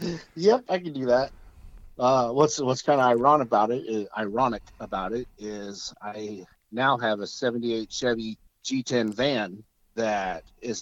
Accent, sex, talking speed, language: American, male, 140 wpm, English